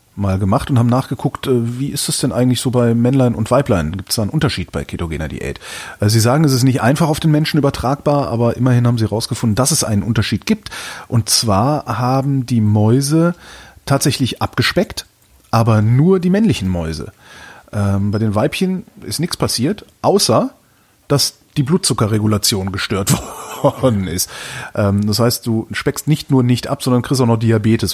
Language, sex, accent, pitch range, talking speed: German, male, German, 105-140 Hz, 175 wpm